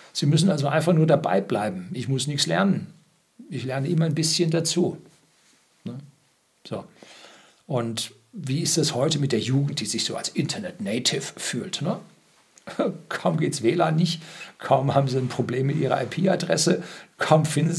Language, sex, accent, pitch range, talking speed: German, male, German, 125-170 Hz, 165 wpm